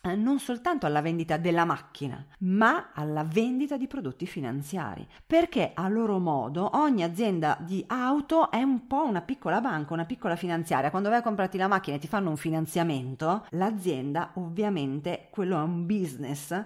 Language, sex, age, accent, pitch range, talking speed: Italian, female, 40-59, native, 155-205 Hz, 165 wpm